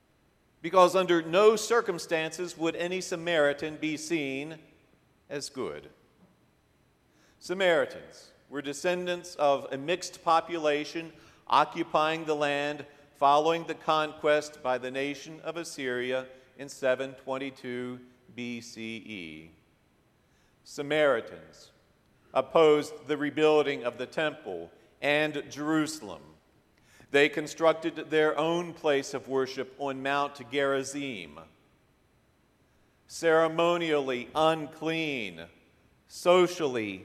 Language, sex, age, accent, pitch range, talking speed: English, male, 50-69, American, 135-165 Hz, 85 wpm